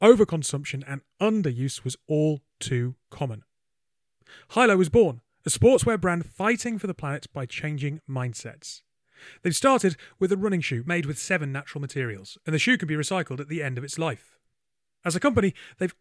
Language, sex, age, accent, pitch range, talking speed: English, male, 30-49, British, 130-180 Hz, 175 wpm